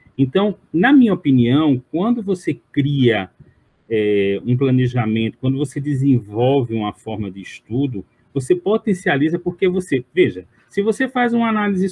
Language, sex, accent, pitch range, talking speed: Portuguese, male, Brazilian, 120-180 Hz, 130 wpm